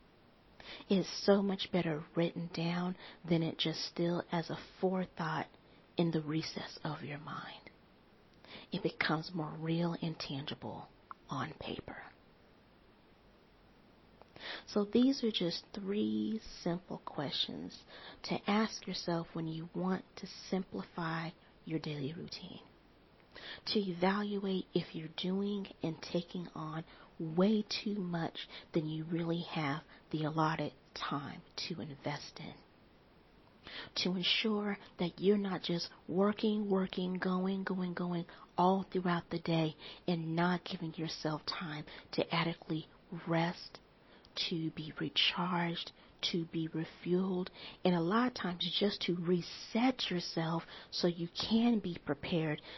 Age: 40-59